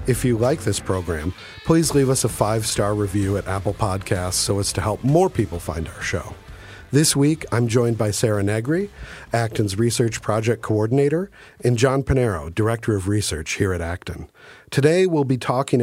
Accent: American